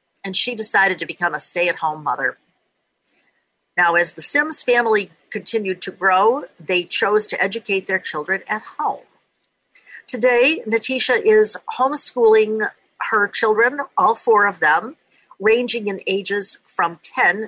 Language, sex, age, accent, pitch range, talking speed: English, female, 50-69, American, 175-235 Hz, 135 wpm